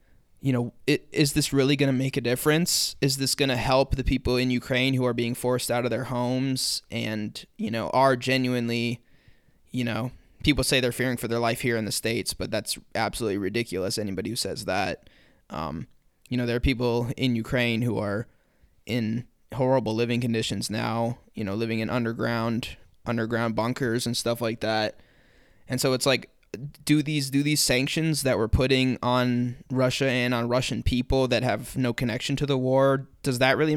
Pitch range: 115-130 Hz